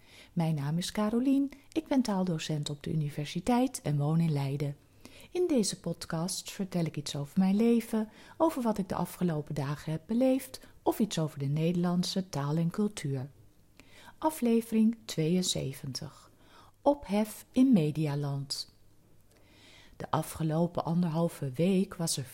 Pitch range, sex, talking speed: 145-210 Hz, female, 135 wpm